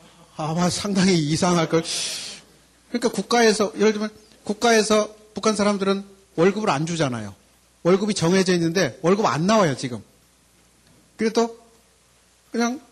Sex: male